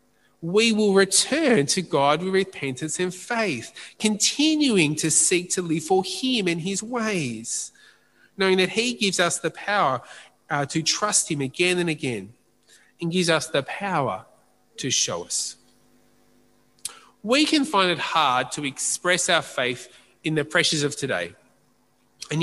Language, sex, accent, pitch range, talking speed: English, male, Australian, 140-190 Hz, 150 wpm